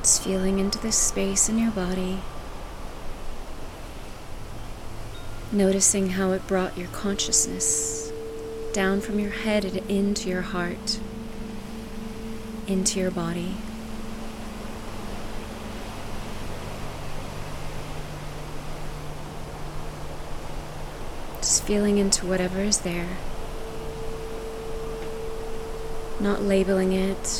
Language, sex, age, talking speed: English, female, 30-49, 75 wpm